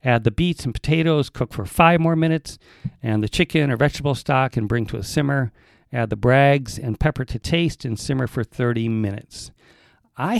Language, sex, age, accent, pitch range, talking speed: English, male, 50-69, American, 115-140 Hz, 195 wpm